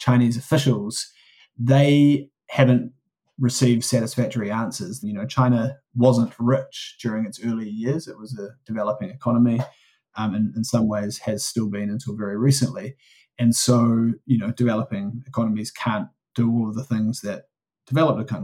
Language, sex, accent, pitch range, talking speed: English, male, Australian, 110-125 Hz, 150 wpm